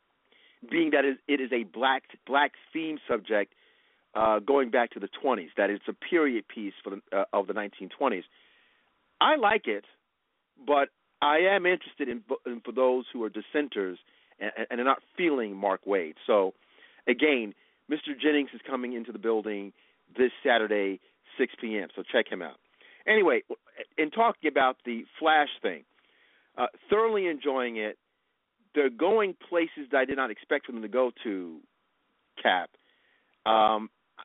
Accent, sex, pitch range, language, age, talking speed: American, male, 120-145 Hz, English, 40-59, 150 wpm